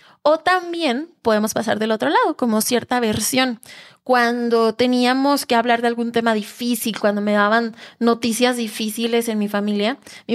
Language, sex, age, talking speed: Spanish, female, 20-39, 155 wpm